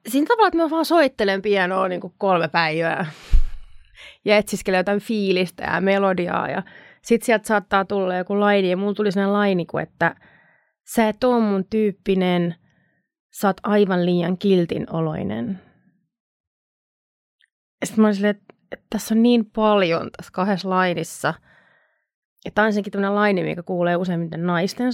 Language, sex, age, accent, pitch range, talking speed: Finnish, female, 30-49, native, 175-220 Hz, 130 wpm